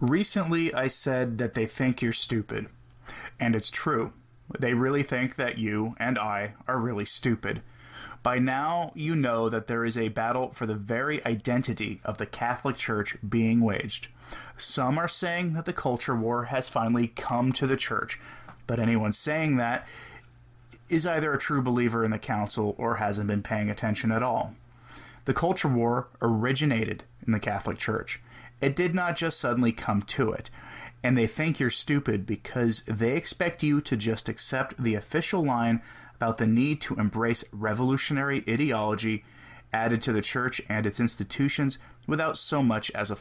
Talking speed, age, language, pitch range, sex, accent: 170 wpm, 20-39, English, 110-135 Hz, male, American